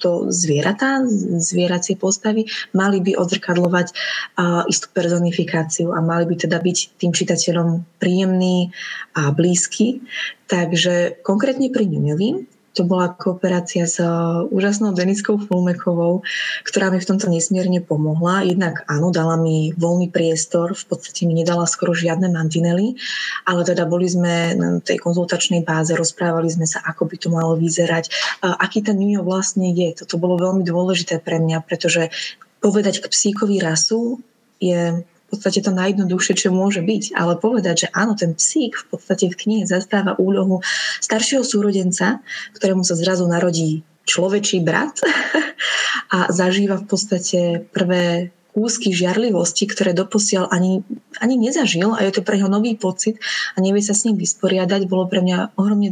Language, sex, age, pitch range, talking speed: Slovak, female, 20-39, 170-200 Hz, 145 wpm